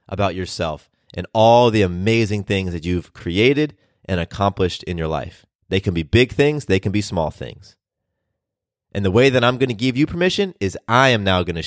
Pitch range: 90-110 Hz